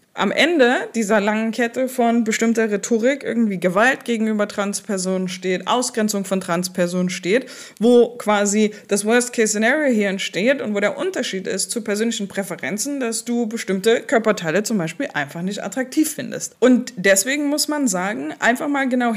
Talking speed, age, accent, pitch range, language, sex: 160 wpm, 20-39, German, 185-245 Hz, German, female